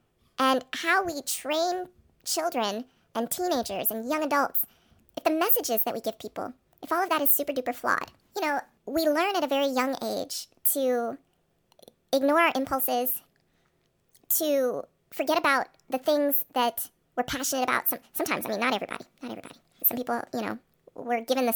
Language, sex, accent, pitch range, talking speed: English, male, American, 245-295 Hz, 170 wpm